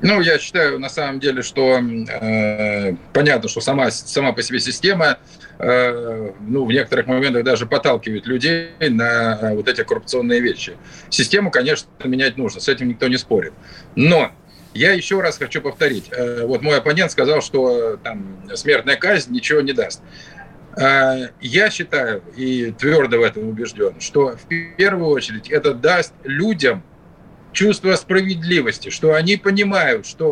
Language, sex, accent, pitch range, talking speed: Russian, male, native, 130-200 Hz, 150 wpm